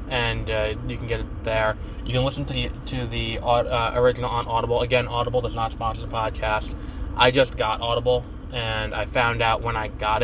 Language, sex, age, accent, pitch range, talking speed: English, male, 20-39, American, 100-120 Hz, 210 wpm